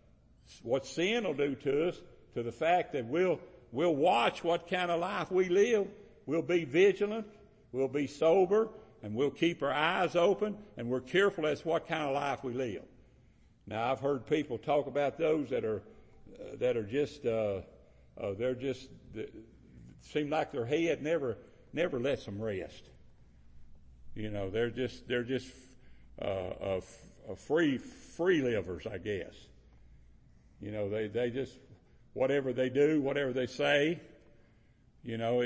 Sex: male